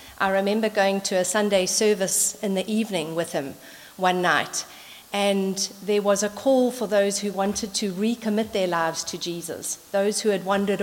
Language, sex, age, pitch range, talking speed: English, female, 50-69, 185-225 Hz, 185 wpm